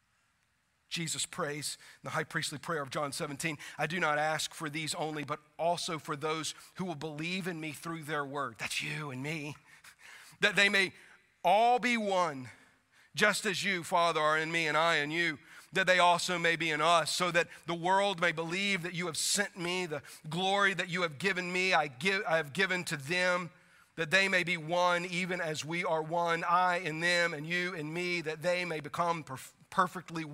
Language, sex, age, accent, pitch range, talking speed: English, male, 40-59, American, 150-180 Hz, 205 wpm